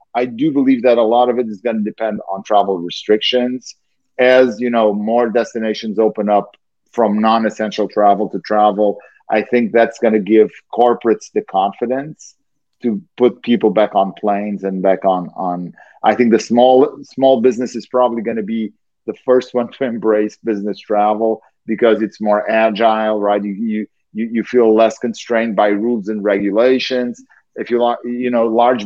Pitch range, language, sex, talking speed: 105-125 Hz, English, male, 175 wpm